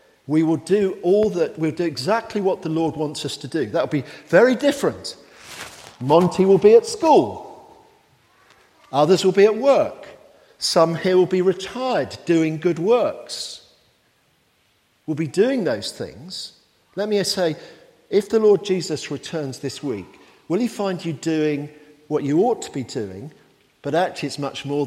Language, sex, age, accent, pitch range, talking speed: English, male, 50-69, British, 135-200 Hz, 165 wpm